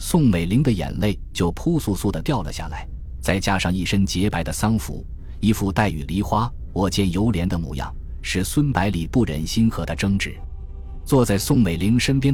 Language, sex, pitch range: Chinese, male, 80-105 Hz